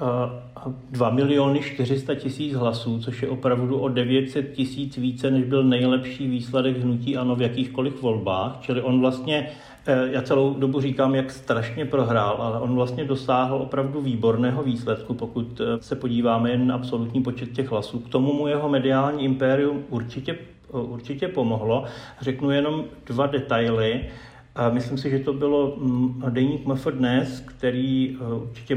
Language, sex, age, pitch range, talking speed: Slovak, male, 40-59, 125-135 Hz, 150 wpm